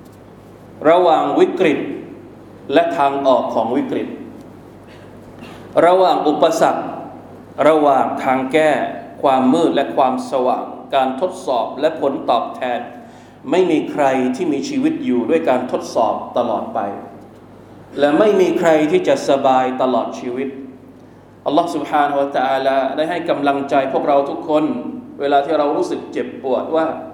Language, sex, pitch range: Thai, male, 135-185 Hz